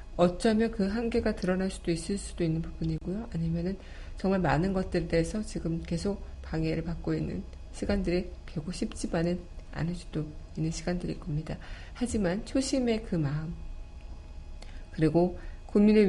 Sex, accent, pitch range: female, native, 160-195 Hz